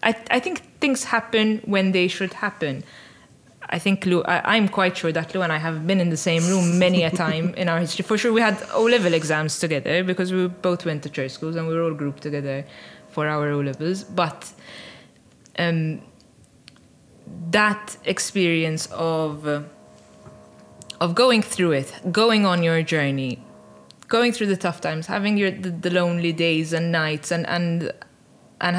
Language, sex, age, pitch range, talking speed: English, female, 20-39, 160-185 Hz, 175 wpm